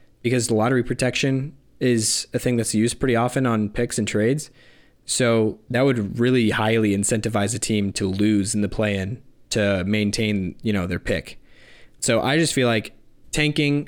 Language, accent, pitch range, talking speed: English, American, 105-120 Hz, 175 wpm